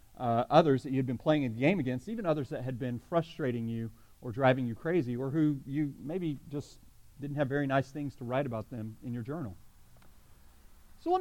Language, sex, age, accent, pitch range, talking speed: English, male, 40-59, American, 105-155 Hz, 210 wpm